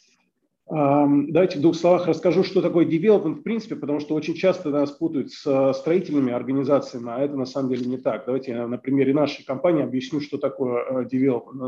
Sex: male